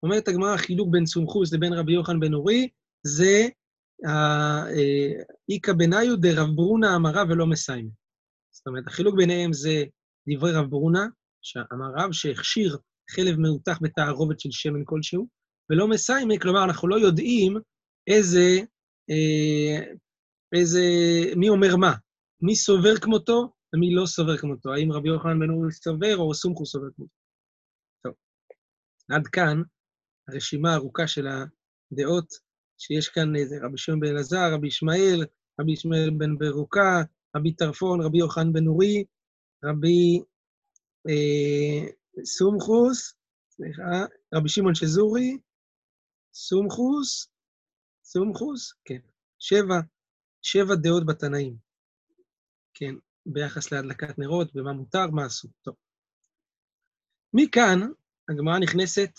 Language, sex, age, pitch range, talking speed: Hebrew, male, 30-49, 150-195 Hz, 120 wpm